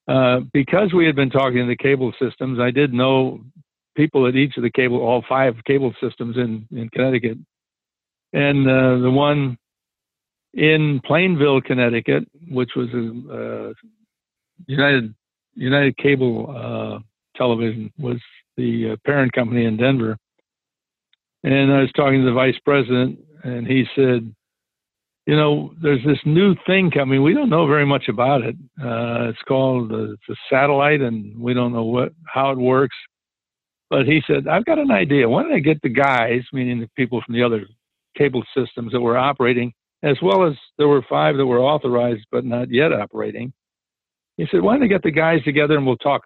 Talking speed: 175 wpm